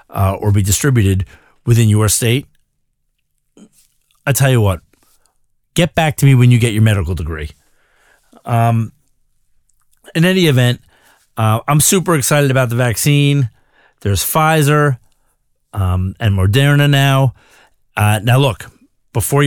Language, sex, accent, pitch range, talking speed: English, male, American, 100-130 Hz, 130 wpm